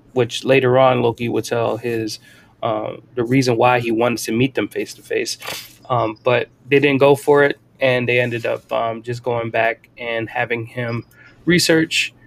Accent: American